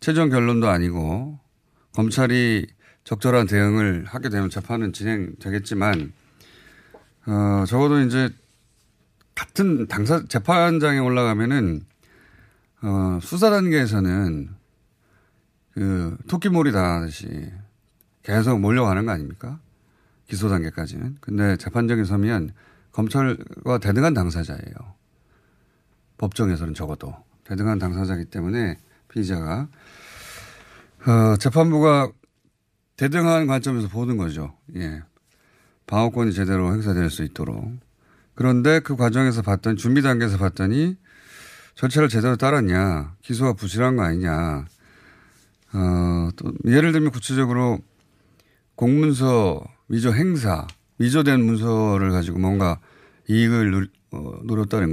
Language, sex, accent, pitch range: Korean, male, native, 95-125 Hz